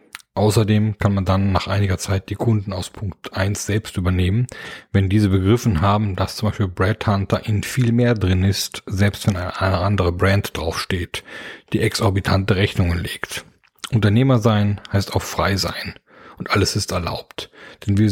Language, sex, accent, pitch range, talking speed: German, male, German, 95-105 Hz, 165 wpm